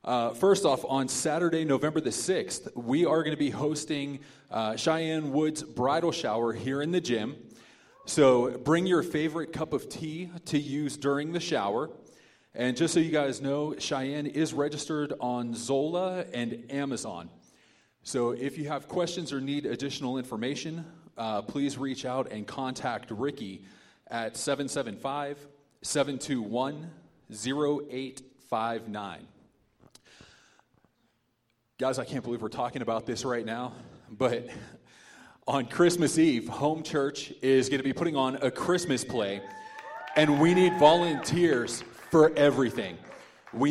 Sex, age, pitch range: male, 30-49, 125-155 Hz